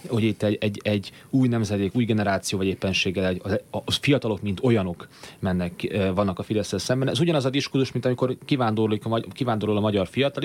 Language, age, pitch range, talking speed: Hungarian, 30-49, 105-130 Hz, 190 wpm